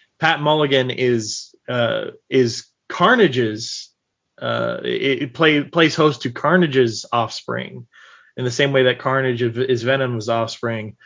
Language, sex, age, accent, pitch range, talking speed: English, male, 20-39, American, 115-150 Hz, 125 wpm